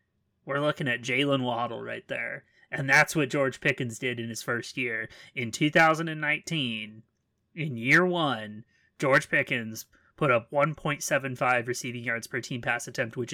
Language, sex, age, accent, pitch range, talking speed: English, male, 30-49, American, 125-170 Hz, 155 wpm